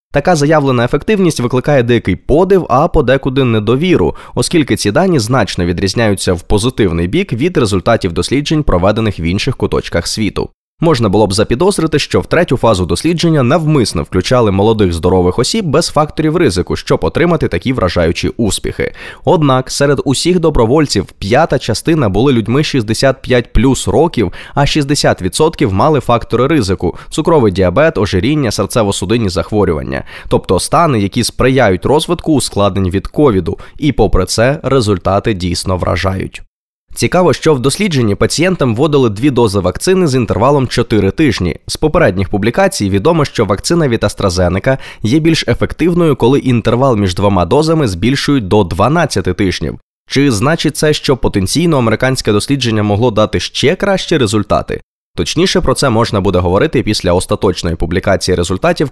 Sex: male